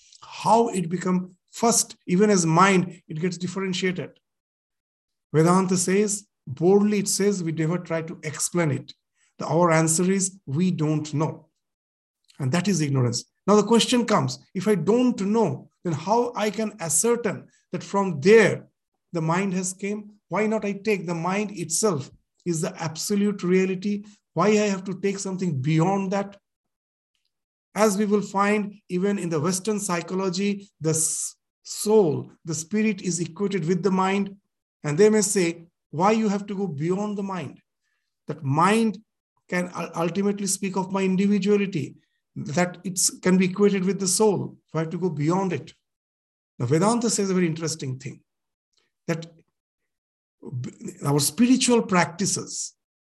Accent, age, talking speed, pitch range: Indian, 50-69, 150 wpm, 165-205 Hz